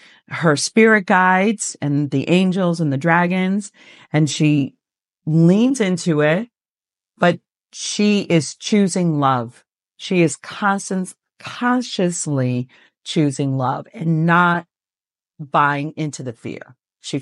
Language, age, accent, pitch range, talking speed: English, 50-69, American, 140-185 Hz, 110 wpm